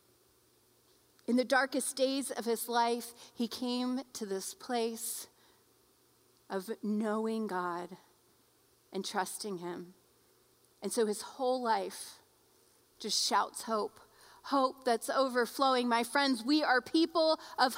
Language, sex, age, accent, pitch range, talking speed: English, female, 30-49, American, 240-310 Hz, 120 wpm